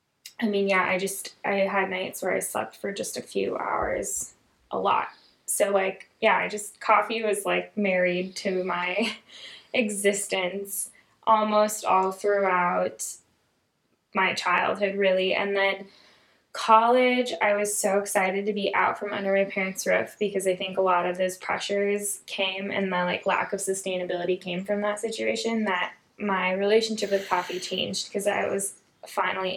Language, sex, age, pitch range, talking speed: English, female, 10-29, 185-210 Hz, 160 wpm